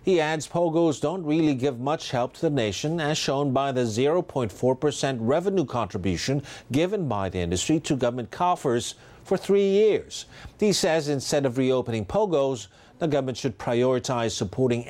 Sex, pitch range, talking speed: male, 115-150 Hz, 160 wpm